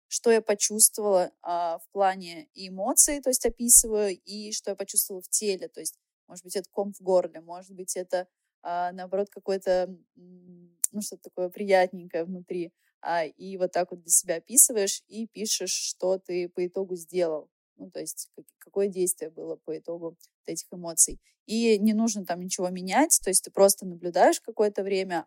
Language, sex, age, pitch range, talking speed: Russian, female, 20-39, 170-200 Hz, 165 wpm